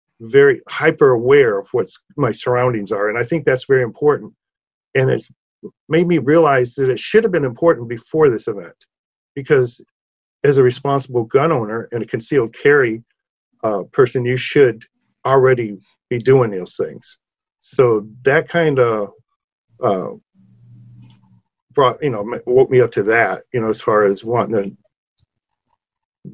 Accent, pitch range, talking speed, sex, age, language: American, 115-155 Hz, 150 wpm, male, 50-69, English